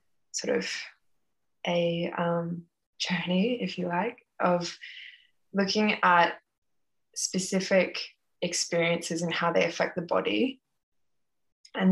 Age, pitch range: 20-39, 170-180 Hz